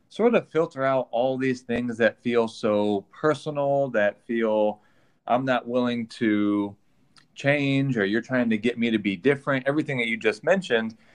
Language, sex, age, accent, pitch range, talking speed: English, male, 30-49, American, 115-140 Hz, 170 wpm